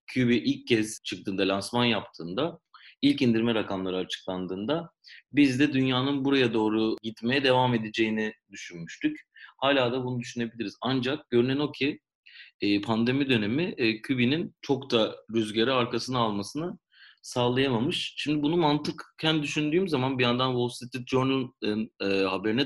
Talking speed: 125 wpm